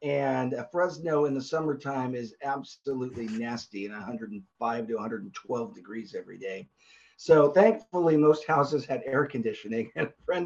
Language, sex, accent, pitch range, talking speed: English, male, American, 120-155 Hz, 145 wpm